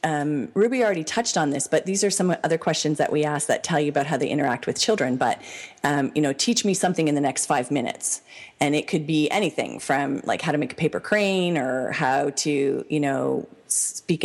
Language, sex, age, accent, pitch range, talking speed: English, female, 30-49, American, 145-180 Hz, 230 wpm